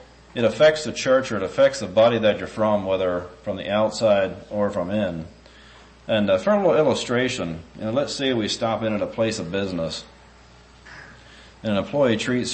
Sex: male